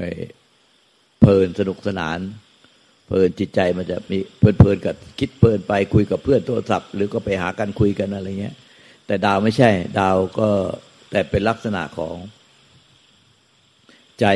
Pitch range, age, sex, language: 95-110 Hz, 60-79, male, Thai